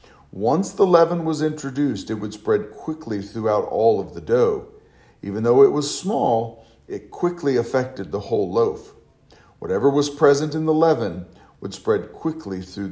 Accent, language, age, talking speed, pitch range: American, English, 50-69, 165 wpm, 105-150 Hz